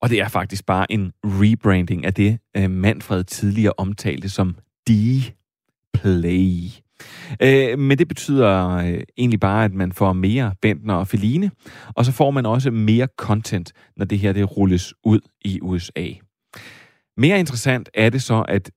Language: Danish